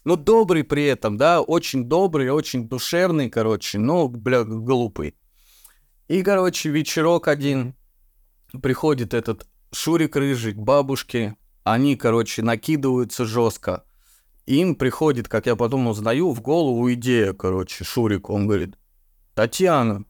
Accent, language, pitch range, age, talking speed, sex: native, Russian, 110-140 Hz, 20-39, 120 wpm, male